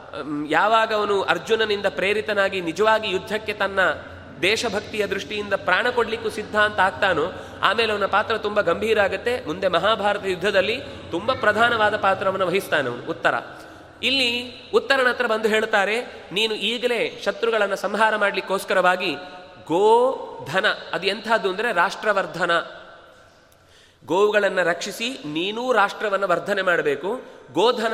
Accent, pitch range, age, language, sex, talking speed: native, 180-225 Hz, 30-49, Kannada, male, 105 wpm